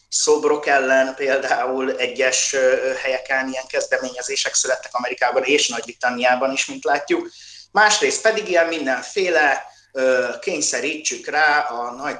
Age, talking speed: 30-49, 115 wpm